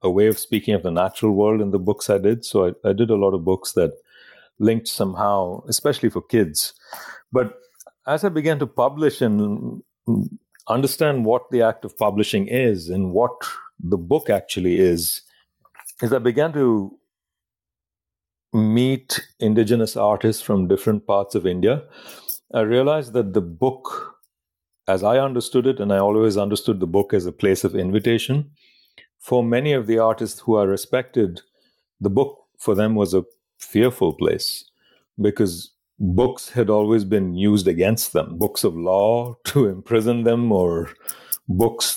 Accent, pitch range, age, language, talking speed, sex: Indian, 100-120 Hz, 50-69, English, 155 wpm, male